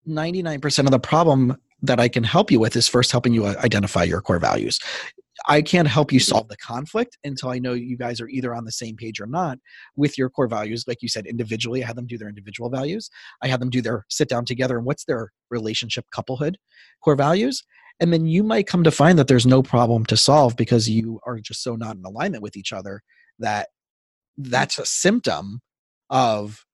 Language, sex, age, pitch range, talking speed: English, male, 30-49, 115-145 Hz, 220 wpm